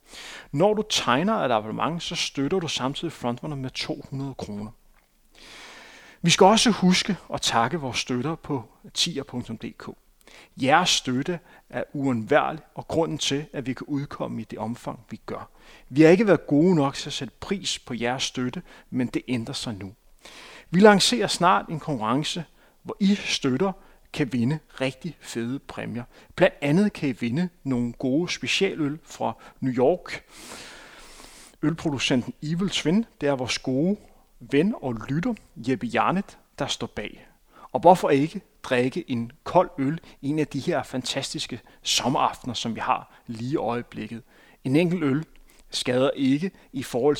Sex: male